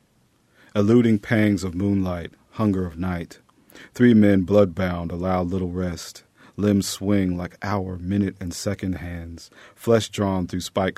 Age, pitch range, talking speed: 40-59, 90-100 Hz, 135 wpm